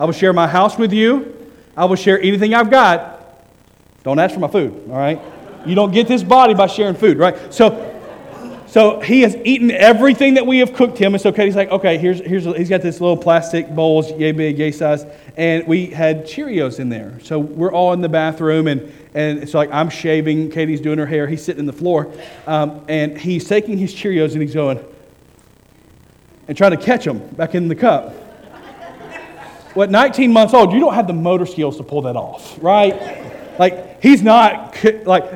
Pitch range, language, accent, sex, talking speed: 160-220 Hz, English, American, male, 205 wpm